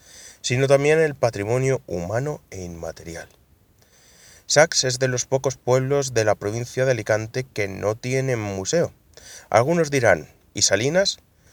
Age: 30-49